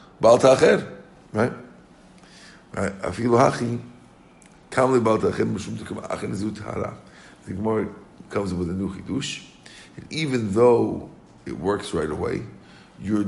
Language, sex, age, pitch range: English, male, 50-69, 90-110 Hz